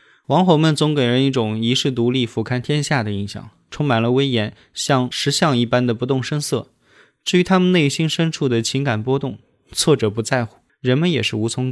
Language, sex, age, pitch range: Chinese, male, 20-39, 115-145 Hz